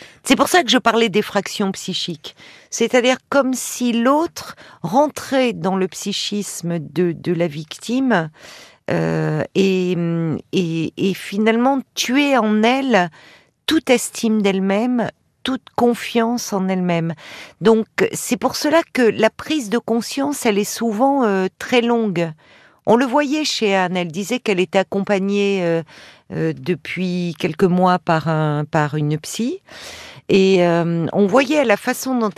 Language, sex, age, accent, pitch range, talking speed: French, female, 50-69, French, 175-245 Hz, 145 wpm